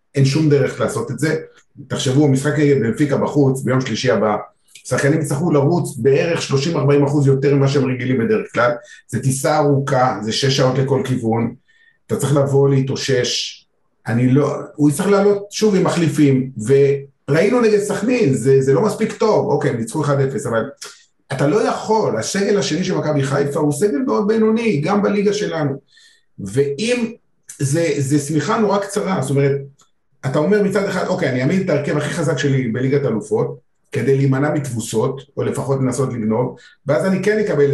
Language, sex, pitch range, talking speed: Hebrew, male, 135-190 Hz, 150 wpm